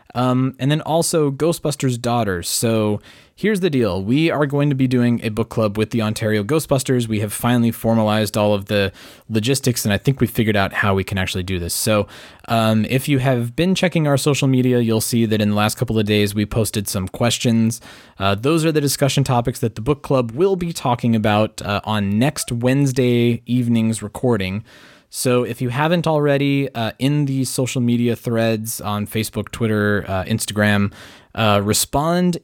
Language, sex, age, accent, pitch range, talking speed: English, male, 20-39, American, 110-140 Hz, 190 wpm